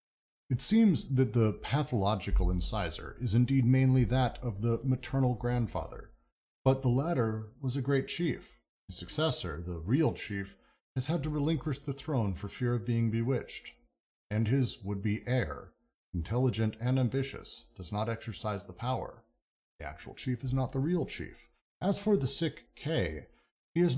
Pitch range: 105-135 Hz